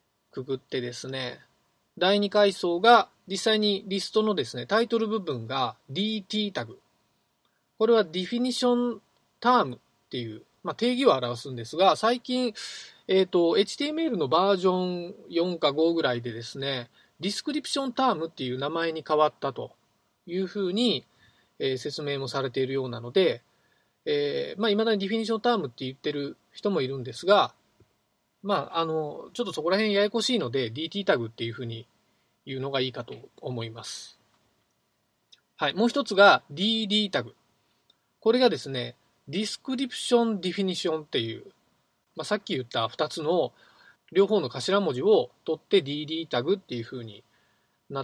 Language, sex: Japanese, male